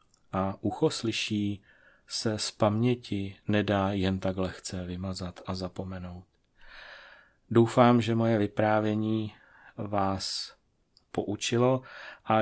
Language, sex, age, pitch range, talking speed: Czech, male, 30-49, 95-110 Hz, 95 wpm